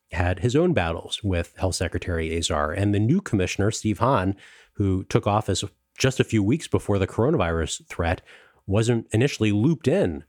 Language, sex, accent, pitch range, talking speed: English, male, American, 95-120 Hz, 170 wpm